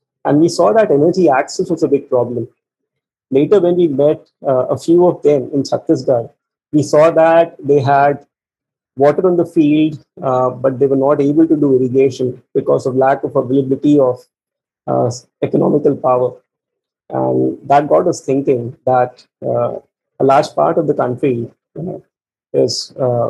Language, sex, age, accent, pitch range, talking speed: English, male, 30-49, Indian, 130-150 Hz, 160 wpm